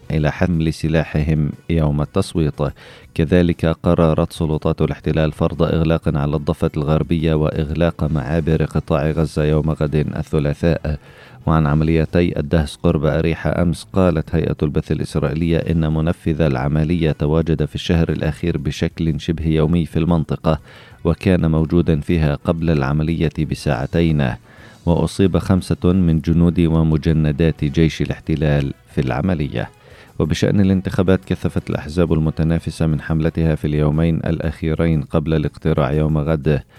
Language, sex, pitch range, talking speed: Arabic, male, 75-85 Hz, 115 wpm